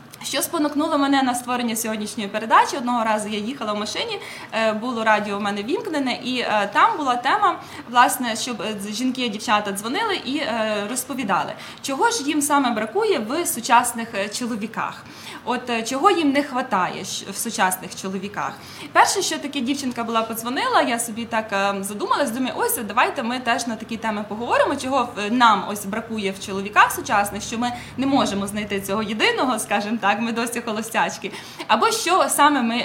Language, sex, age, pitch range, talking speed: English, female, 20-39, 205-270 Hz, 165 wpm